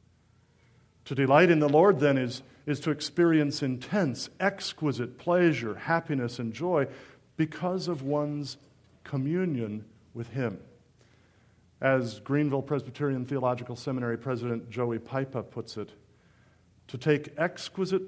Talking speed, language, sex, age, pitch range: 115 wpm, English, male, 50-69, 120-155 Hz